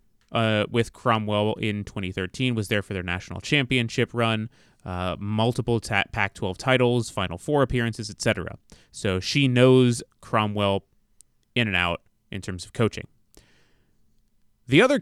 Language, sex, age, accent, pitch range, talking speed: English, male, 30-49, American, 95-120 Hz, 130 wpm